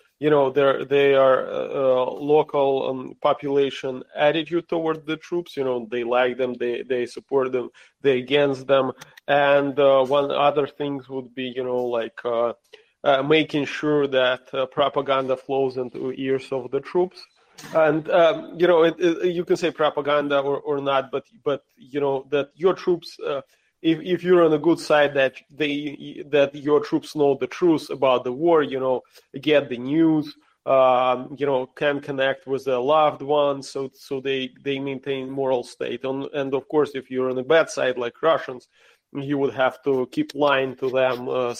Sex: male